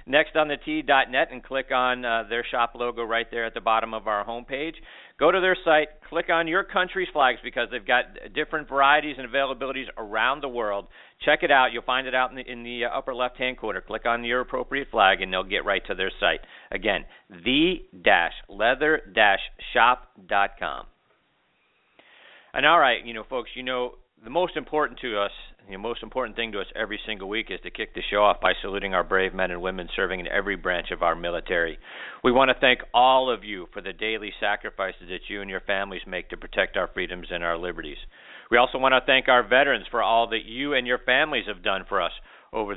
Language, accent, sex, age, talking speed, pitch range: English, American, male, 50-69, 215 wpm, 105-140 Hz